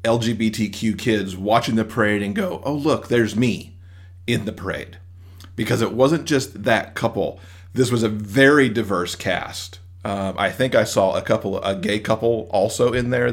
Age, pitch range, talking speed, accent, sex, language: 40-59, 90-115 Hz, 175 wpm, American, male, English